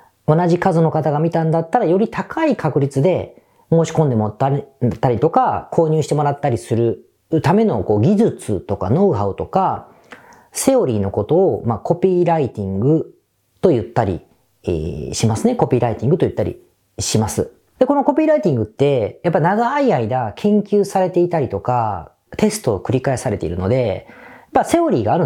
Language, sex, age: Japanese, female, 40-59